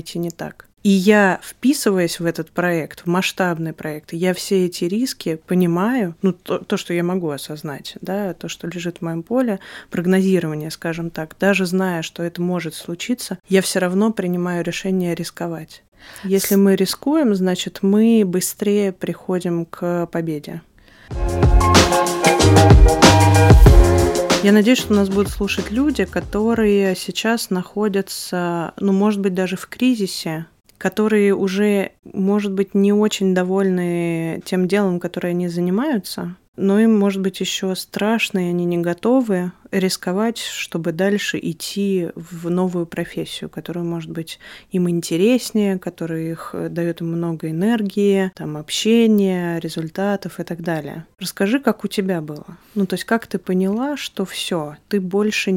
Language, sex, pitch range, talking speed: Russian, female, 170-200 Hz, 140 wpm